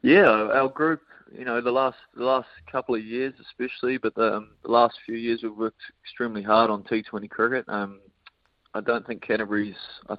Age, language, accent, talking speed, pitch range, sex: 20-39, English, Australian, 195 wpm, 100-115 Hz, male